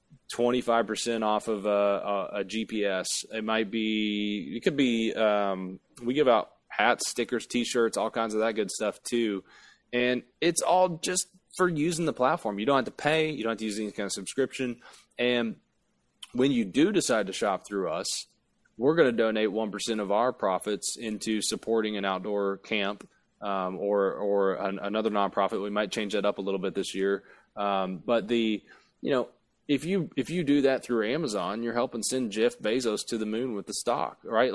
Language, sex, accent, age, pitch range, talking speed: English, male, American, 20-39, 100-120 Hz, 200 wpm